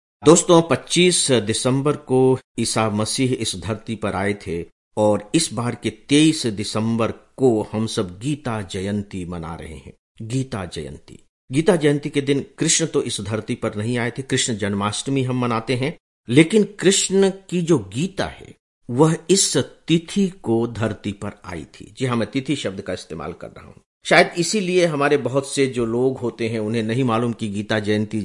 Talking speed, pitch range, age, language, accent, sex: 170 wpm, 105-145 Hz, 50-69, English, Indian, male